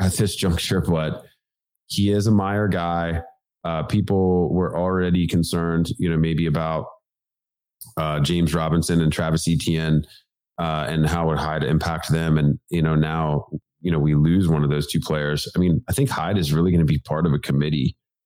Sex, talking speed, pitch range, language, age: male, 190 wpm, 75-90 Hz, English, 30-49